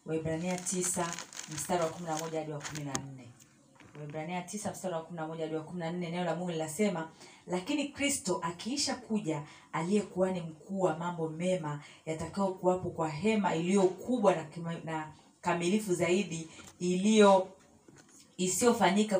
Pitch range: 160-195 Hz